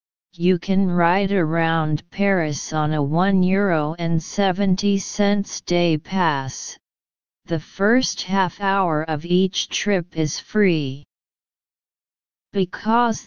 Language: English